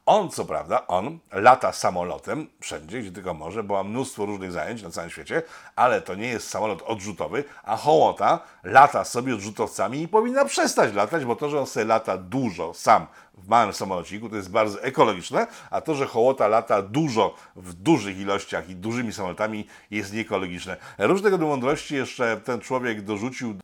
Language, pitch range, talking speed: Polish, 95-120 Hz, 175 wpm